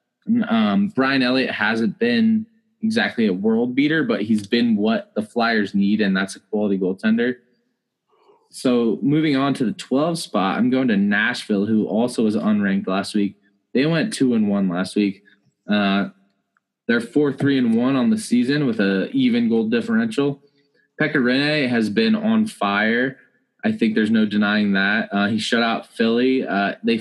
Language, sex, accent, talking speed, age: English, male, American, 175 wpm, 20-39